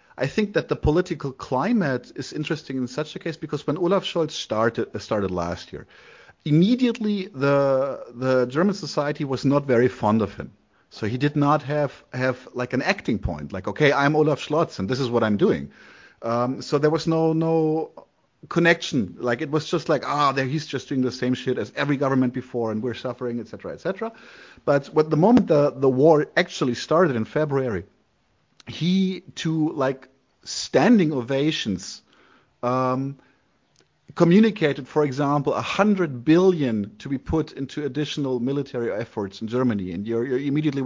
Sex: male